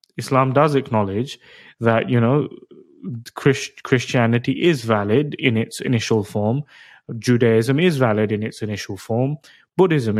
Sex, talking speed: male, 130 wpm